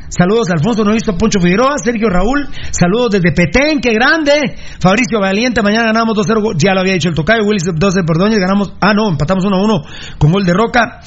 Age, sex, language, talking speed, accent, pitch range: 40-59, male, Spanish, 215 wpm, Mexican, 165-205 Hz